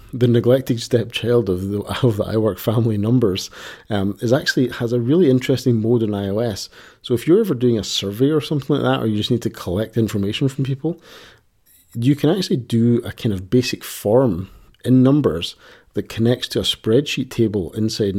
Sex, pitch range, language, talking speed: male, 100-120 Hz, English, 190 wpm